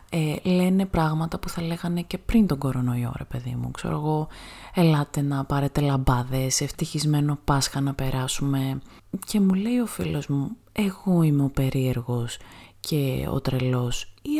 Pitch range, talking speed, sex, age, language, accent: 130-185 Hz, 155 wpm, female, 20-39, Greek, native